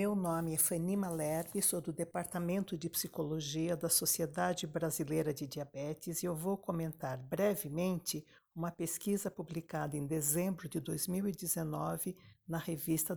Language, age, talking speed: Portuguese, 60-79, 130 wpm